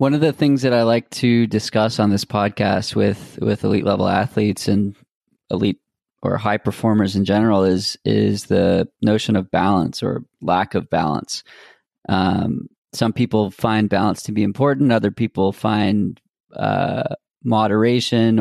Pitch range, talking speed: 100-120 Hz, 155 wpm